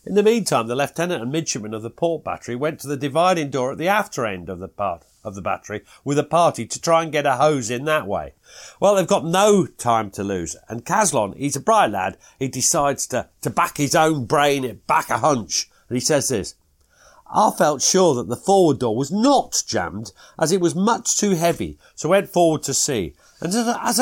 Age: 50-69